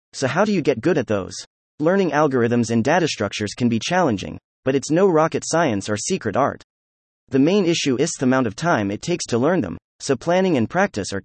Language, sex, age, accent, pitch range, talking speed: English, male, 30-49, American, 110-165 Hz, 225 wpm